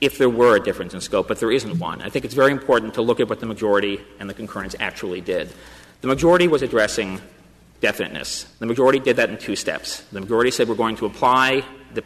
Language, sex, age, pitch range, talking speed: English, male, 40-59, 100-130 Hz, 235 wpm